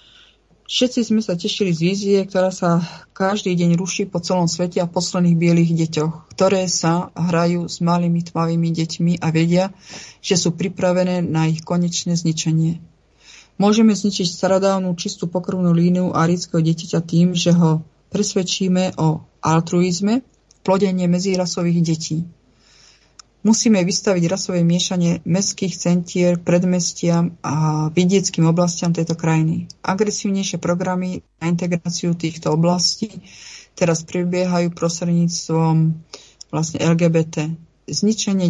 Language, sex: Czech, female